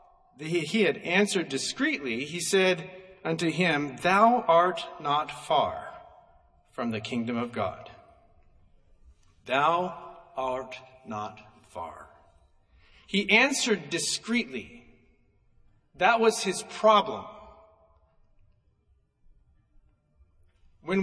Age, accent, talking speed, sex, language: 50-69, American, 85 wpm, male, English